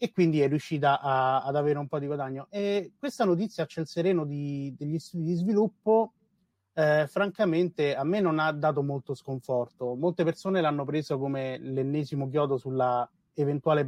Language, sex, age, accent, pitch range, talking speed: Italian, male, 30-49, native, 135-165 Hz, 165 wpm